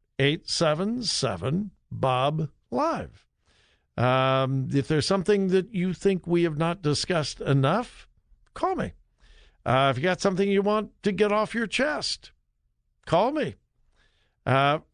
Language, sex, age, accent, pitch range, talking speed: English, male, 60-79, American, 130-190 Hz, 120 wpm